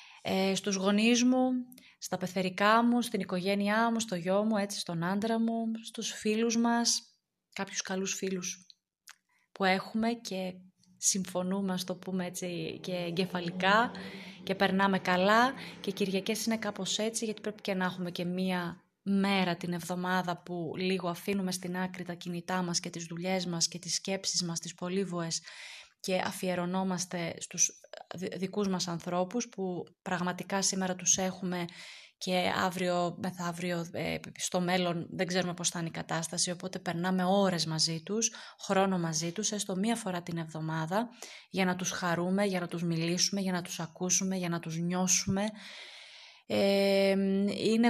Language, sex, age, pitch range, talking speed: Greek, female, 20-39, 180-200 Hz, 155 wpm